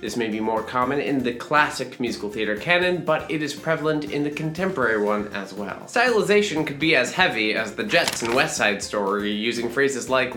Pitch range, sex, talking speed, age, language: 130-185 Hz, male, 210 wpm, 20-39, English